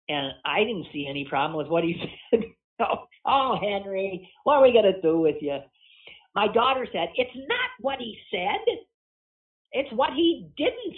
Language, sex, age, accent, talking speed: English, male, 50-69, American, 175 wpm